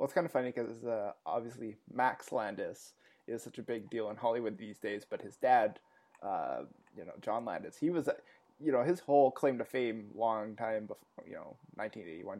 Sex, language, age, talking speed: male, English, 20-39, 205 wpm